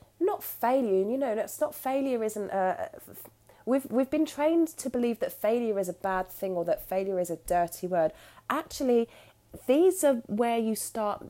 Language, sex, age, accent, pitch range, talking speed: English, female, 30-49, British, 180-265 Hz, 185 wpm